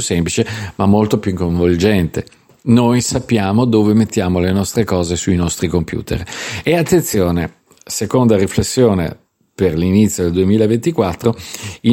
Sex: male